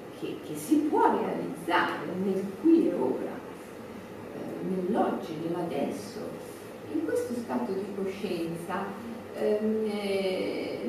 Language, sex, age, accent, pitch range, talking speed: Italian, female, 40-59, native, 195-265 Hz, 95 wpm